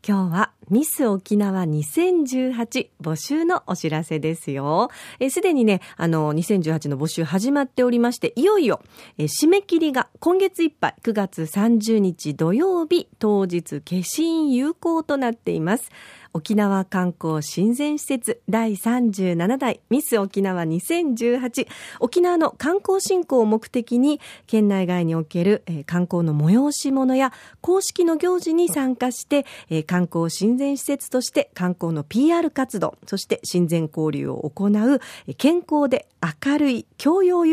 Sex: female